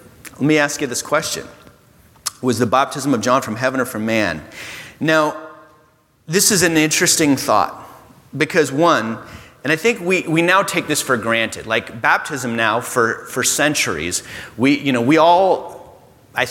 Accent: American